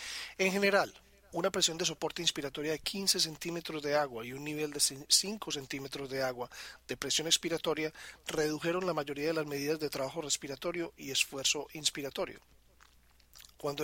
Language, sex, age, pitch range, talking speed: Spanish, male, 40-59, 140-170 Hz, 155 wpm